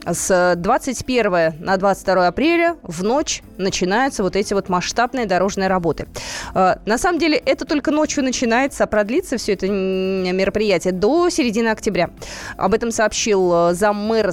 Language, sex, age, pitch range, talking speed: Russian, female, 20-39, 195-260 Hz, 135 wpm